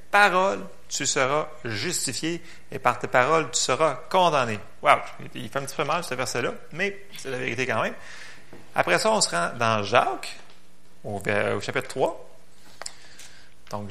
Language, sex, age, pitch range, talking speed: French, male, 30-49, 110-160 Hz, 165 wpm